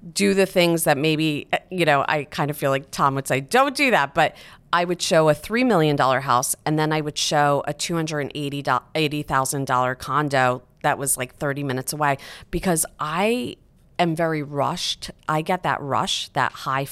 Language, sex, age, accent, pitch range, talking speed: English, female, 30-49, American, 135-160 Hz, 180 wpm